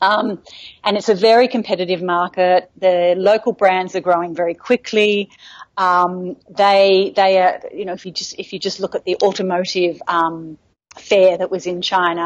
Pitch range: 180-210 Hz